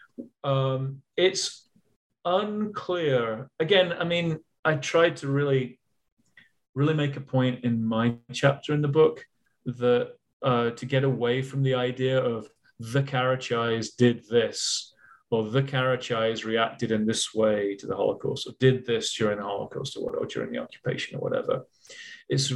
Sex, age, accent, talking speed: male, 30-49, British, 150 wpm